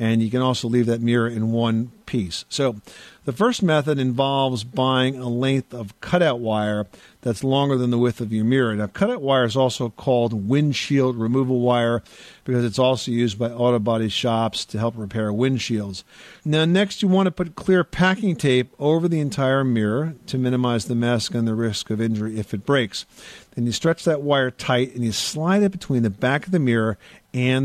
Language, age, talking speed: English, 50-69, 200 wpm